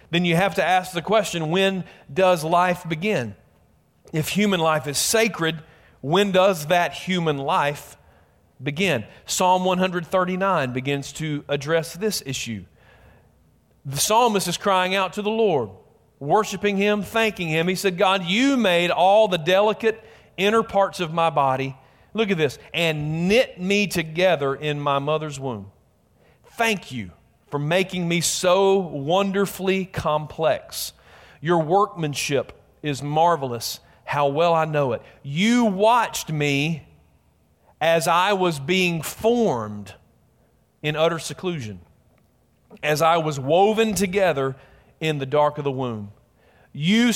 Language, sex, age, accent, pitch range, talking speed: English, male, 40-59, American, 145-190 Hz, 135 wpm